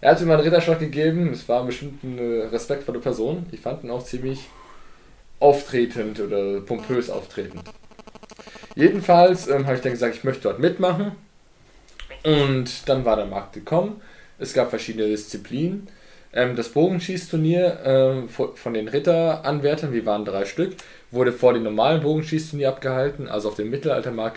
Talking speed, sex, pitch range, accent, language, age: 155 wpm, male, 115-155 Hz, German, German, 20-39